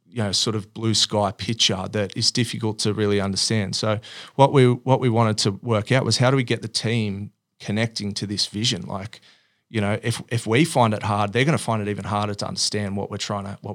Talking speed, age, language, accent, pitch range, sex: 245 wpm, 30-49, English, Australian, 105-115 Hz, male